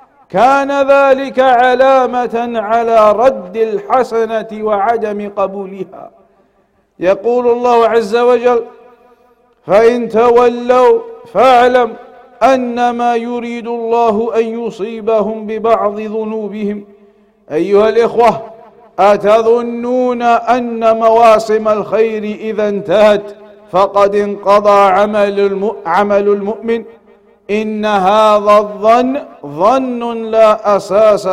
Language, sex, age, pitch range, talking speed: English, male, 50-69, 210-245 Hz, 80 wpm